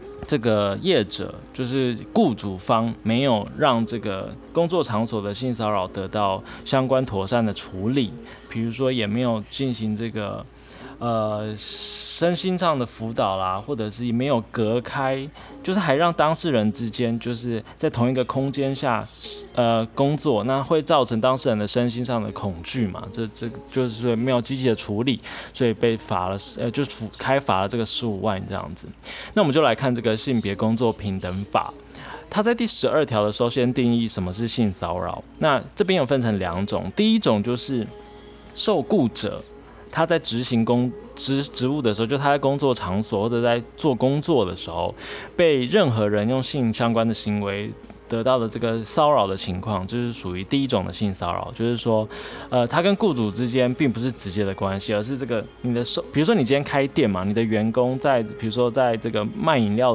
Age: 20-39